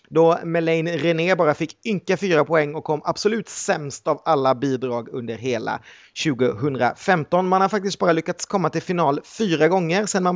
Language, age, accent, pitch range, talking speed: Swedish, 30-49, native, 150-190 Hz, 175 wpm